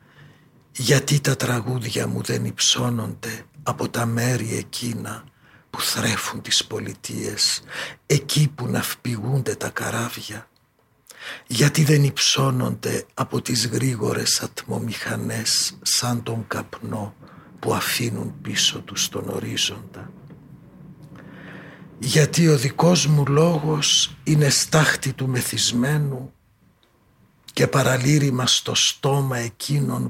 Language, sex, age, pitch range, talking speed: Greek, male, 60-79, 110-145 Hz, 100 wpm